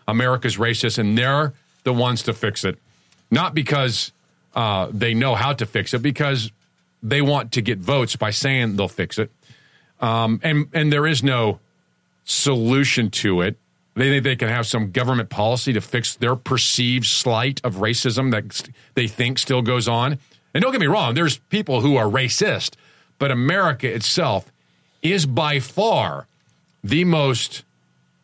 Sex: male